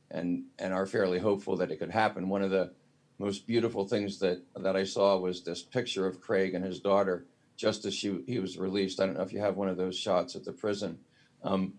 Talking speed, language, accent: 240 wpm, English, American